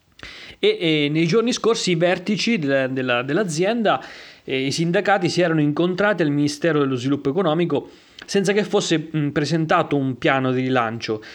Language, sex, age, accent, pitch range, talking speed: Italian, male, 30-49, native, 120-165 Hz, 130 wpm